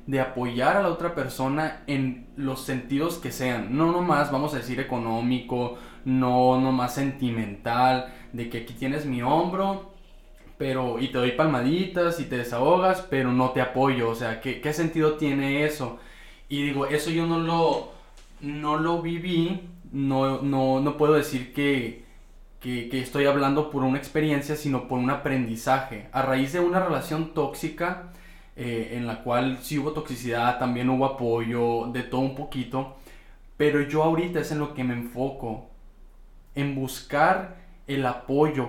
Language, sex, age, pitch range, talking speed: Spanish, male, 20-39, 125-155 Hz, 160 wpm